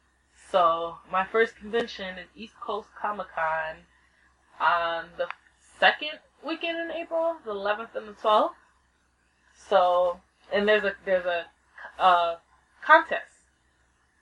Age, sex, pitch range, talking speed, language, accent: 20-39, female, 165-215 Hz, 120 wpm, English, American